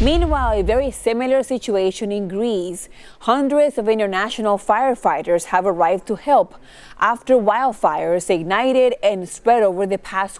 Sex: female